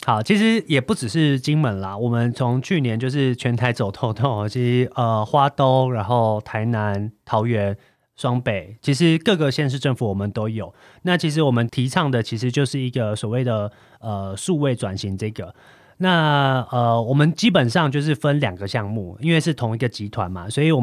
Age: 30-49